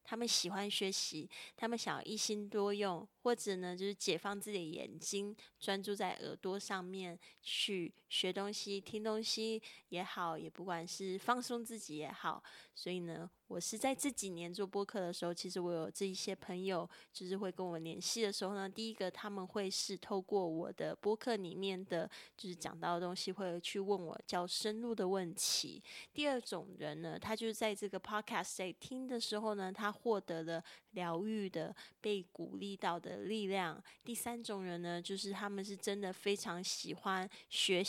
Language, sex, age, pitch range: Chinese, female, 10-29, 180-215 Hz